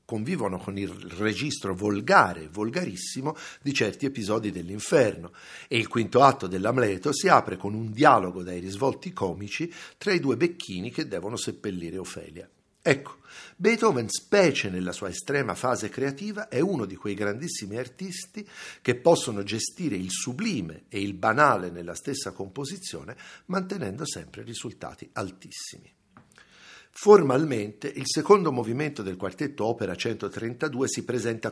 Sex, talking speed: male, 135 wpm